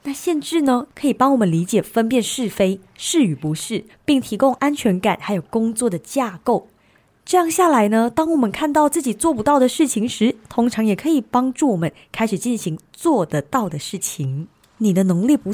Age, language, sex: 20-39, Chinese, female